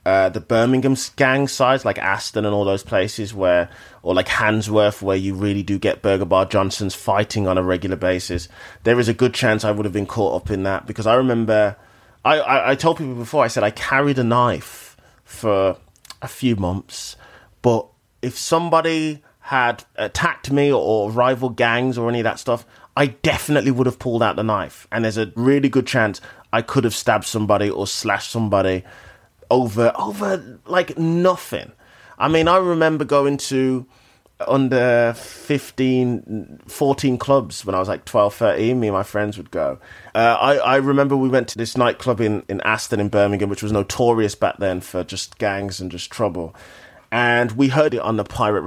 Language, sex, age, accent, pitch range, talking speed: English, male, 30-49, British, 100-130 Hz, 190 wpm